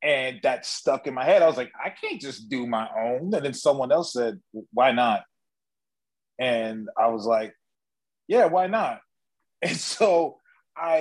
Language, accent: English, American